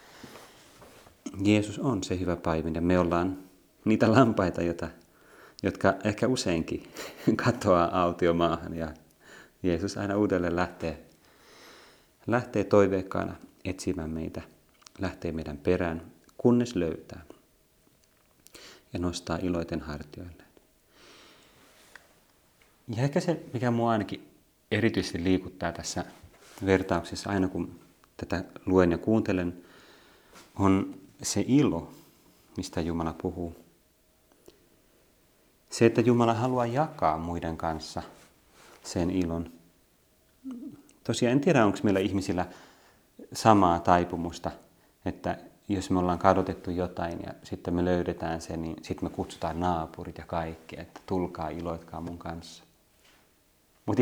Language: Finnish